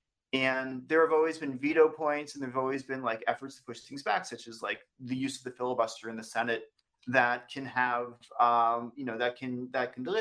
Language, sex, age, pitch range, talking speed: English, male, 30-49, 125-155 Hz, 230 wpm